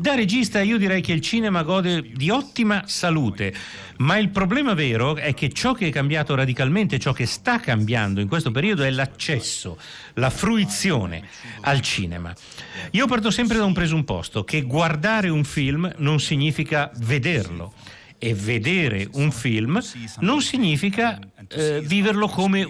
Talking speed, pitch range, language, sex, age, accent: 150 wpm, 115-180 Hz, Italian, male, 50-69, native